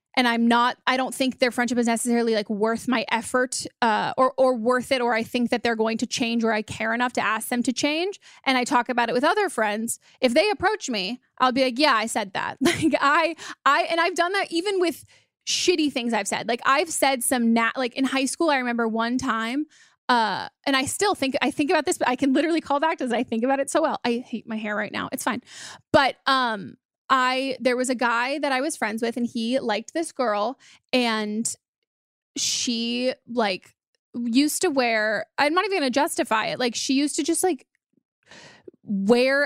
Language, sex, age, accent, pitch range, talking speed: English, female, 20-39, American, 230-290 Hz, 225 wpm